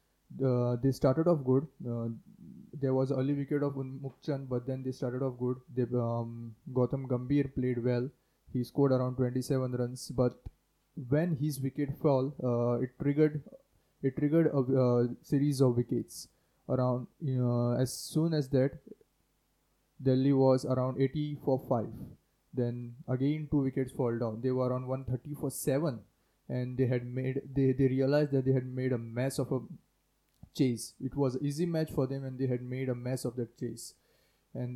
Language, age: English, 20-39